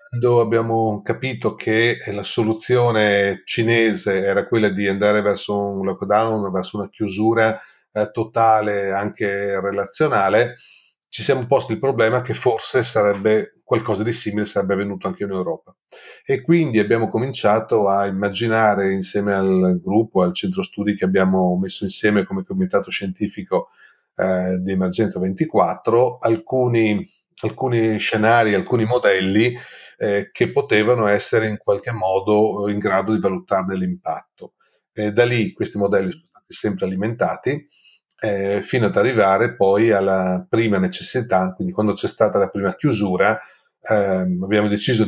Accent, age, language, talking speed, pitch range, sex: native, 40-59, Italian, 140 wpm, 95-115 Hz, male